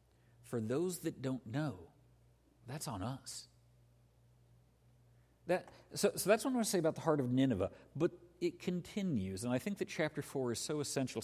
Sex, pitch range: male, 120-155 Hz